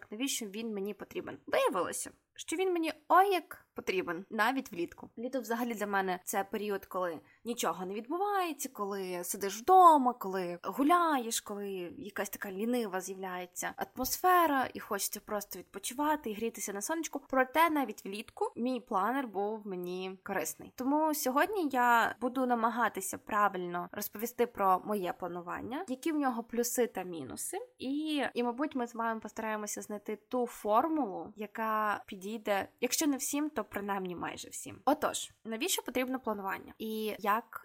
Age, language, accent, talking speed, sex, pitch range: 20-39, Ukrainian, native, 145 wpm, female, 200-270 Hz